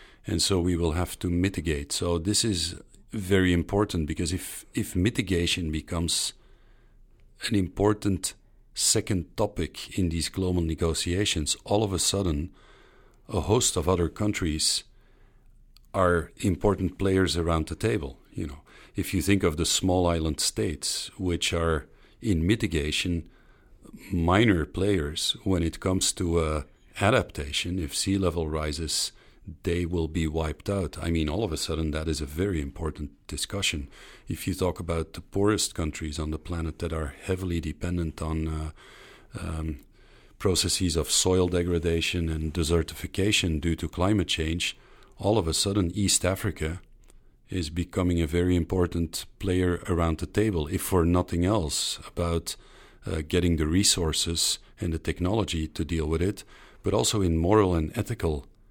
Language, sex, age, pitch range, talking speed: English, male, 50-69, 80-95 Hz, 150 wpm